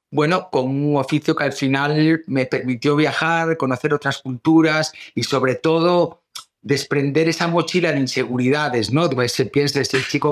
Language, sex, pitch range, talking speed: Spanish, male, 115-145 Hz, 150 wpm